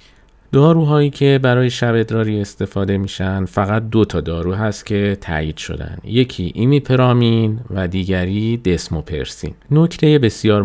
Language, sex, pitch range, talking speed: Persian, male, 85-115 Hz, 125 wpm